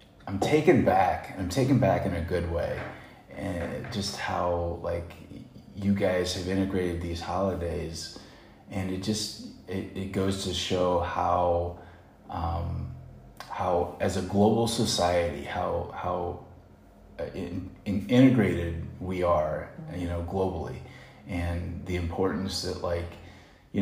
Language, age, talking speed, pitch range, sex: Vietnamese, 30-49, 130 wpm, 85-100 Hz, male